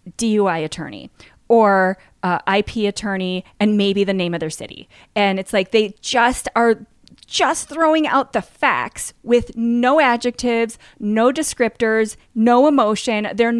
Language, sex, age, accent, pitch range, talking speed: English, female, 30-49, American, 200-250 Hz, 140 wpm